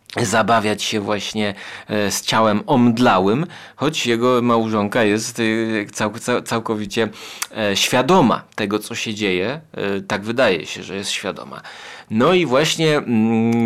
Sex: male